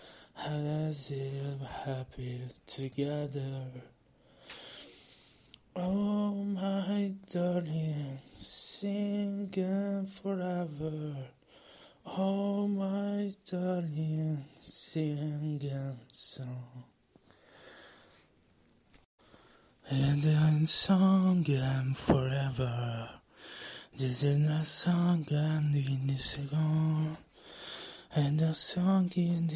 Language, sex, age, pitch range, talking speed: Italian, male, 20-39, 140-175 Hz, 65 wpm